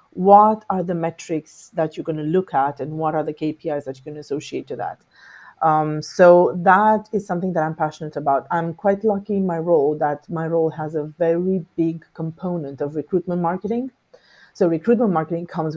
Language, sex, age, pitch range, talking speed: English, female, 30-49, 155-185 Hz, 195 wpm